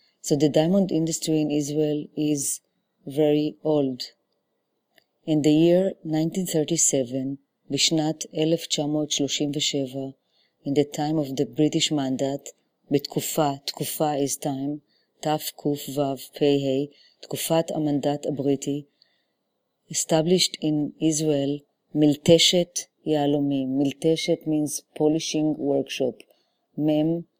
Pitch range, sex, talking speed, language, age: 145-160 Hz, female, 85 wpm, English, 30-49